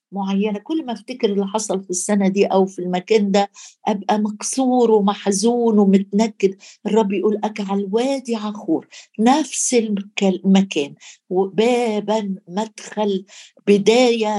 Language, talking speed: Arabic, 115 wpm